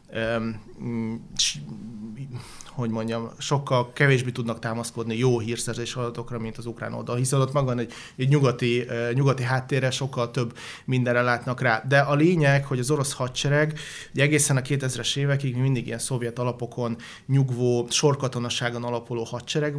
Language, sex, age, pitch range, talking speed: Hungarian, male, 30-49, 120-135 Hz, 135 wpm